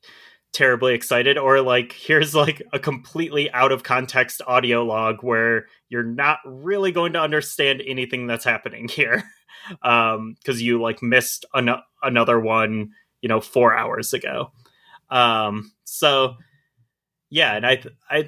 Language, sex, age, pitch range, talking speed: English, male, 20-39, 110-135 Hz, 140 wpm